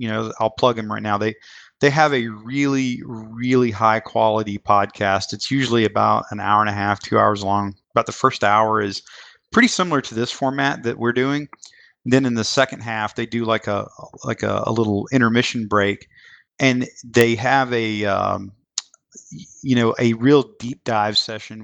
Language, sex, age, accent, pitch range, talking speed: English, male, 30-49, American, 105-125 Hz, 190 wpm